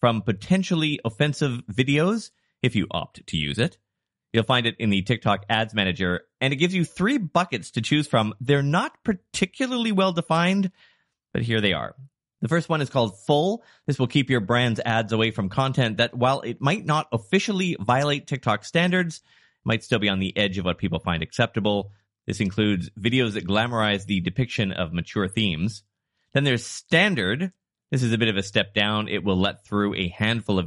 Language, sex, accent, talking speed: English, male, American, 190 wpm